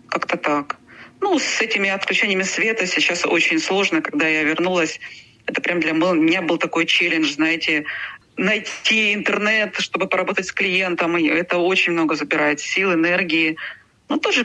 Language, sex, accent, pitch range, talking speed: Russian, female, native, 165-205 Hz, 145 wpm